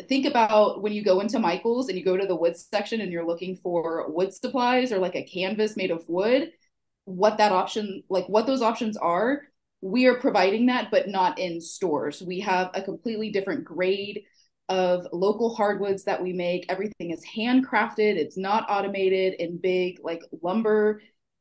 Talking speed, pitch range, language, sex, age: 180 wpm, 185-245 Hz, English, female, 20-39